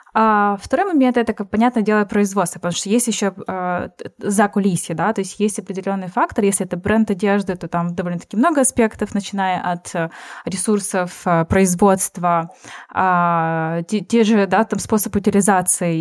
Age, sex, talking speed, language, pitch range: 20-39, female, 155 wpm, Ukrainian, 185-220 Hz